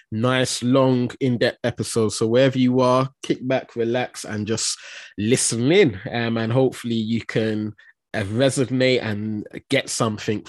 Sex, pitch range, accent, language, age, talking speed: male, 105-125 Hz, British, English, 20-39, 150 wpm